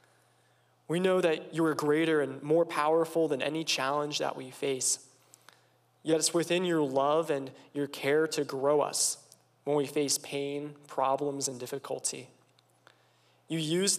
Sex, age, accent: male, 20-39, American